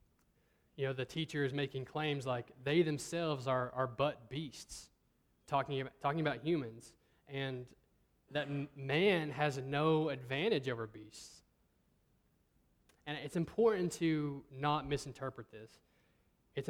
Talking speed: 130 wpm